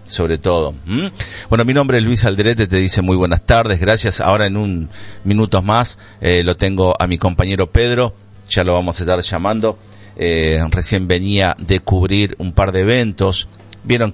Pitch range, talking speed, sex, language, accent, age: 90-110 Hz, 185 wpm, male, Spanish, Argentinian, 40-59